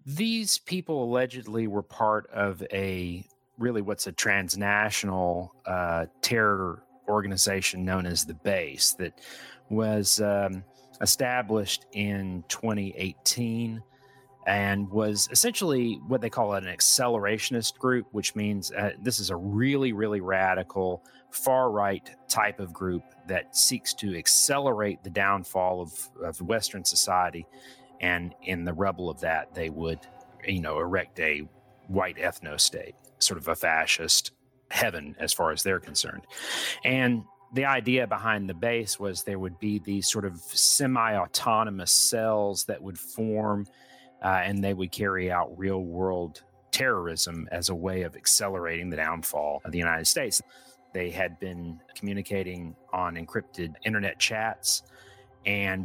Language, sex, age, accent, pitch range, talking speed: English, male, 30-49, American, 90-110 Hz, 140 wpm